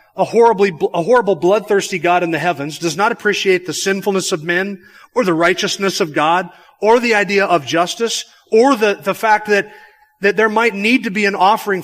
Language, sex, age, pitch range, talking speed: English, male, 40-59, 160-200 Hz, 200 wpm